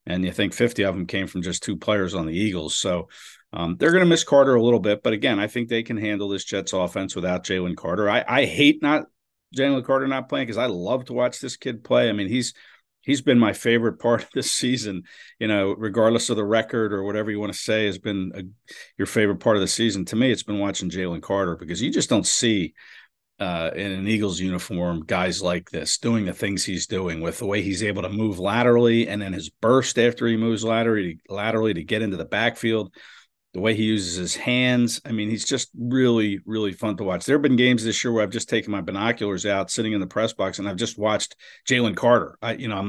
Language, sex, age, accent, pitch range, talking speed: English, male, 50-69, American, 95-115 Hz, 240 wpm